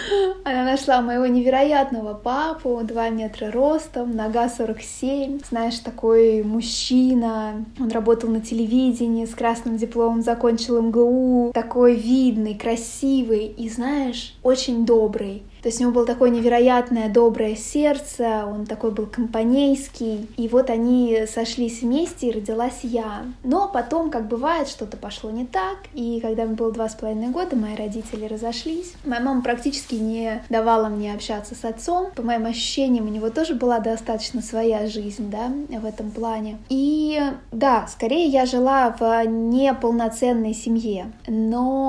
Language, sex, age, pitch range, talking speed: Russian, female, 20-39, 225-270 Hz, 145 wpm